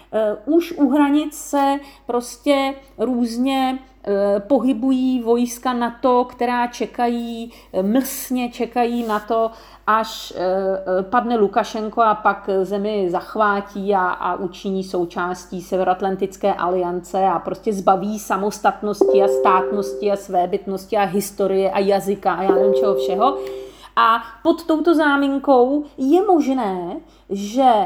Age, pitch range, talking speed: 40-59, 200-275 Hz, 115 wpm